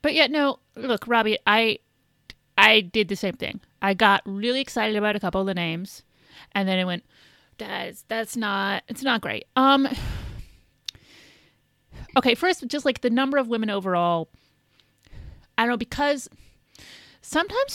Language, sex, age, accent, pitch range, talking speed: English, female, 30-49, American, 175-230 Hz, 155 wpm